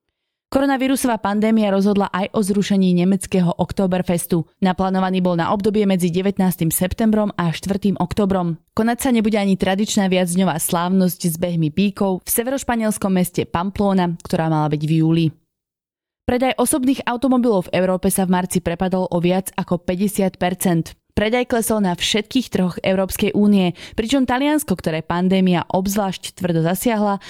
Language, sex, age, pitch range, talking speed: Slovak, female, 20-39, 175-205 Hz, 140 wpm